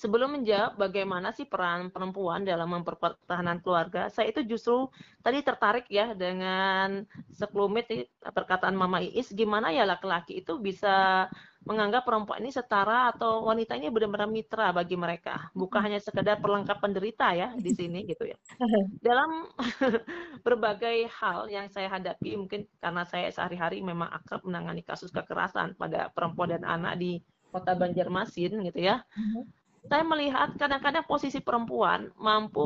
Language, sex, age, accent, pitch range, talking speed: Indonesian, female, 30-49, native, 185-230 Hz, 140 wpm